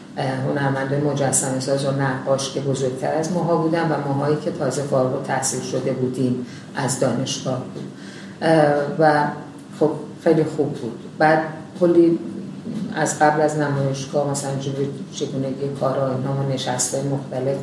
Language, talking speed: Persian, 100 wpm